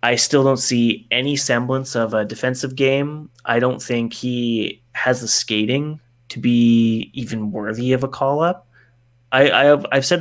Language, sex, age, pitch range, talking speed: English, male, 30-49, 110-135 Hz, 165 wpm